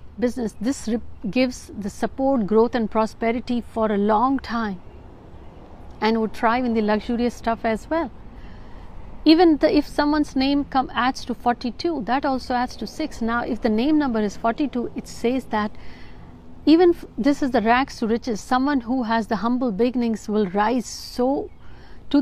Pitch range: 215-260 Hz